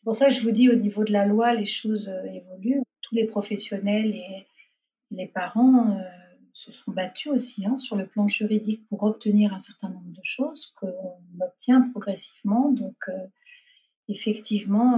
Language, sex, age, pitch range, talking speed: French, female, 40-59, 200-240 Hz, 180 wpm